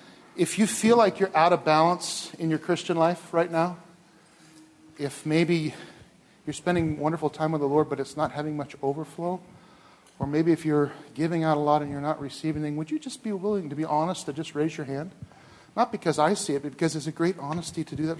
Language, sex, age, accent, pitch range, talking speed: English, male, 40-59, American, 150-180 Hz, 230 wpm